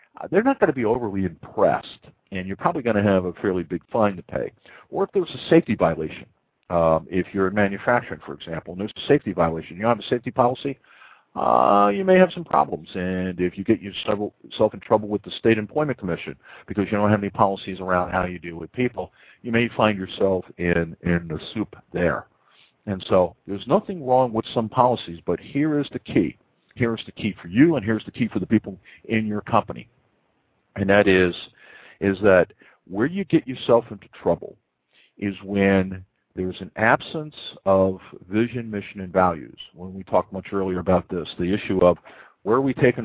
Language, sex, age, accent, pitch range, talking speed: English, male, 50-69, American, 90-115 Hz, 205 wpm